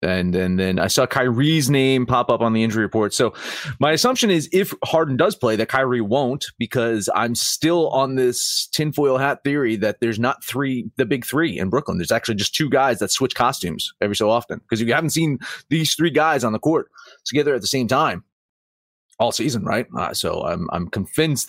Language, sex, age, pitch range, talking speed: English, male, 30-49, 110-140 Hz, 210 wpm